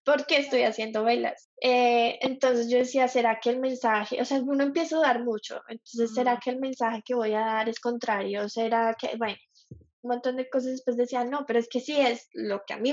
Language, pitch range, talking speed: Spanish, 225-260 Hz, 230 wpm